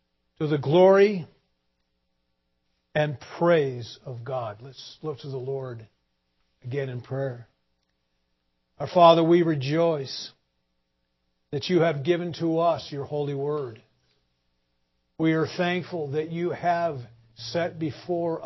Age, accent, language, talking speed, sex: 50-69, American, English, 115 wpm, male